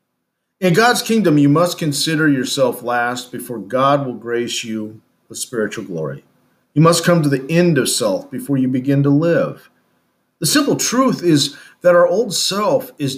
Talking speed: 175 wpm